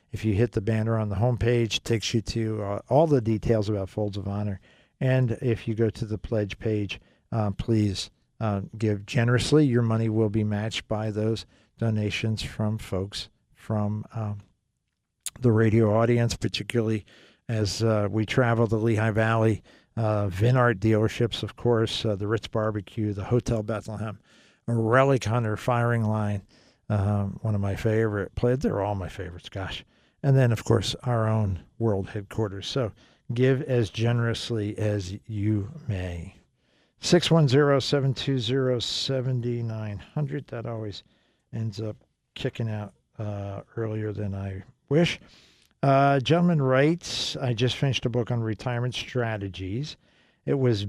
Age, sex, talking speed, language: 50-69, male, 145 wpm, English